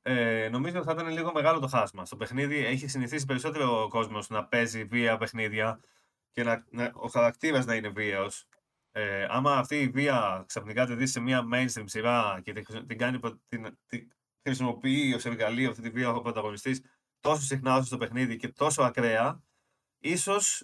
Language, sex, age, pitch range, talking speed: Greek, male, 20-39, 115-150 Hz, 185 wpm